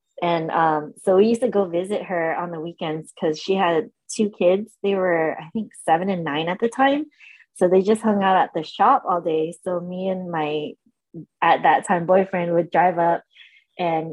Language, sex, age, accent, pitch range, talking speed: English, female, 20-39, American, 175-230 Hz, 210 wpm